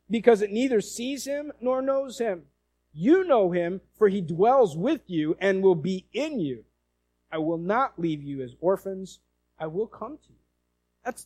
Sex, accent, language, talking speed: male, American, English, 180 wpm